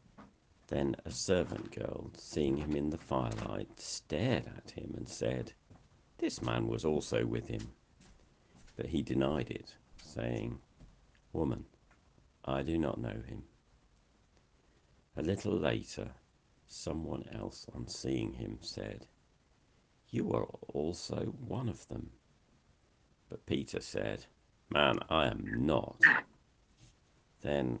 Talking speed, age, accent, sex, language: 115 wpm, 50-69, British, male, English